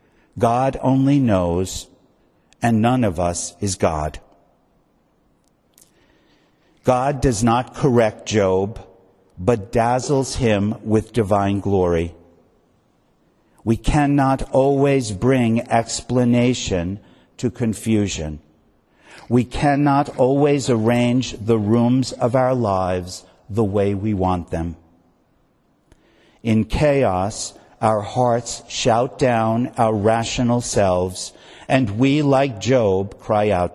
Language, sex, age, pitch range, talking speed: English, male, 50-69, 95-125 Hz, 100 wpm